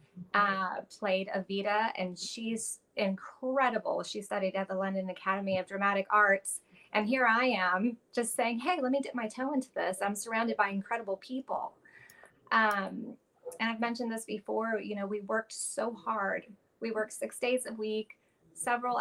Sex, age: female, 20-39